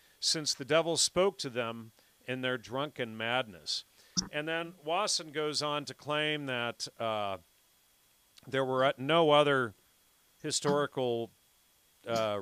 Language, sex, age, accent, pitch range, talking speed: English, male, 40-59, American, 110-135 Hz, 120 wpm